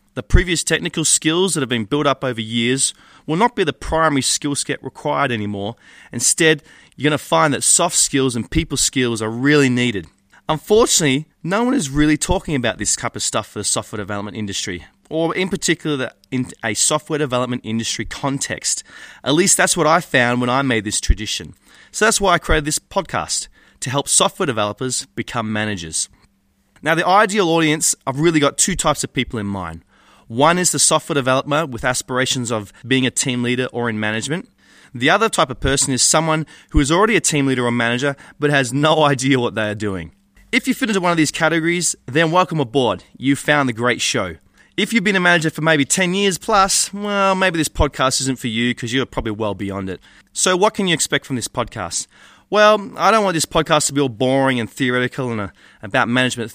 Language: English